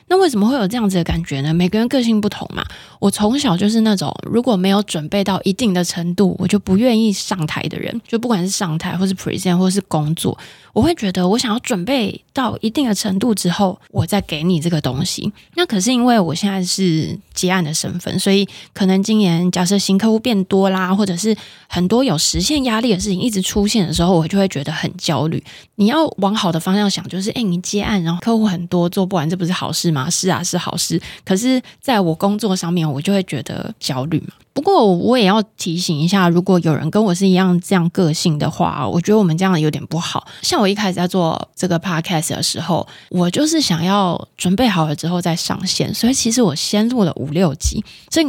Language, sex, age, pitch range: Chinese, female, 20-39, 175-220 Hz